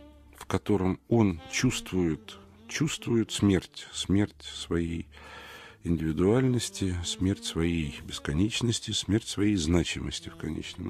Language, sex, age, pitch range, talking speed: Russian, male, 50-69, 85-125 Hz, 95 wpm